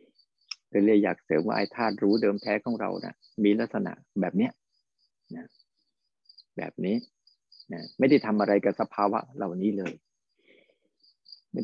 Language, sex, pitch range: Thai, male, 105-130 Hz